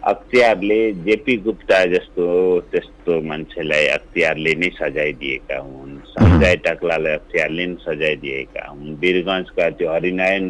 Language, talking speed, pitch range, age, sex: English, 150 wpm, 90-135 Hz, 60-79, male